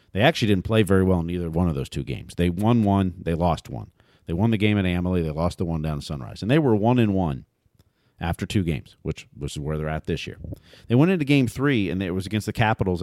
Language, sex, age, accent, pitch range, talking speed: English, male, 40-59, American, 90-120 Hz, 270 wpm